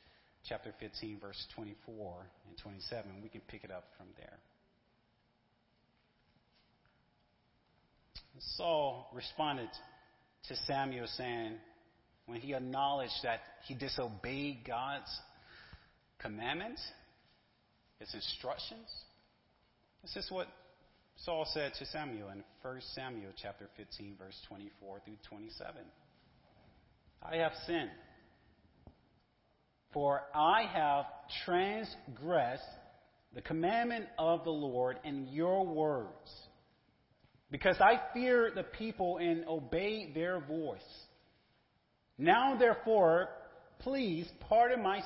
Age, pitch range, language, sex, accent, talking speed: 40-59, 115-170 Hz, English, male, American, 95 wpm